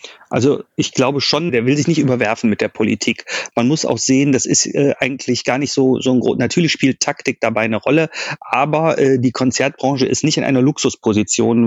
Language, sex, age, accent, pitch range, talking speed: German, male, 40-59, German, 120-145 Hz, 210 wpm